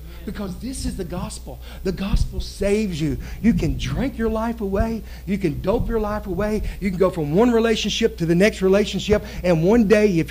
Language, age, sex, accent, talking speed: English, 50-69, male, American, 205 wpm